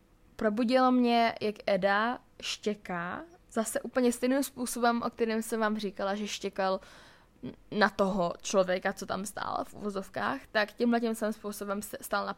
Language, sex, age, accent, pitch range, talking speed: Czech, female, 10-29, native, 200-235 Hz, 150 wpm